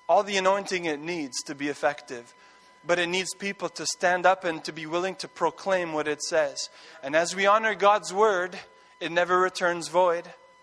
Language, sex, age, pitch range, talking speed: English, male, 20-39, 170-205 Hz, 190 wpm